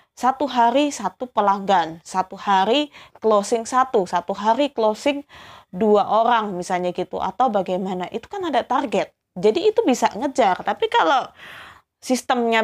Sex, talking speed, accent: female, 135 wpm, native